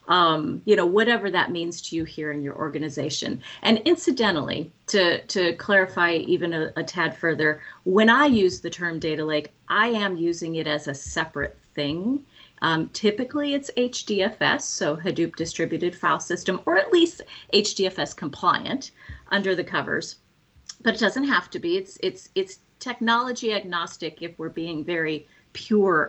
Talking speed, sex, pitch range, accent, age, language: 160 wpm, female, 160-220 Hz, American, 40-59, English